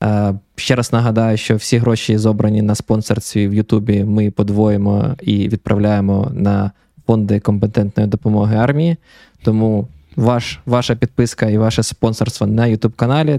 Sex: male